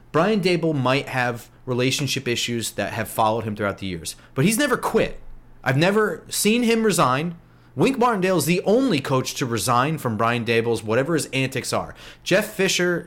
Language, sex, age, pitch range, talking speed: English, male, 30-49, 120-175 Hz, 180 wpm